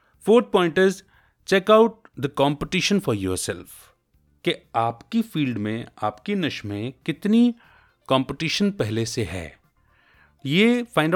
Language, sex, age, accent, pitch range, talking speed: Hindi, male, 30-49, native, 105-155 Hz, 125 wpm